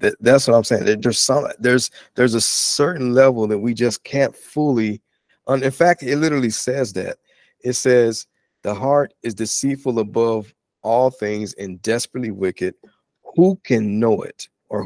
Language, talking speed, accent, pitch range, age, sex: English, 165 wpm, American, 115-140 Hz, 50-69, male